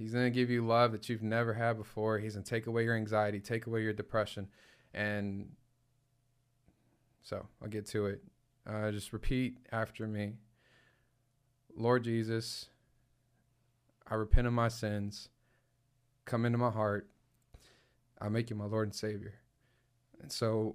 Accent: American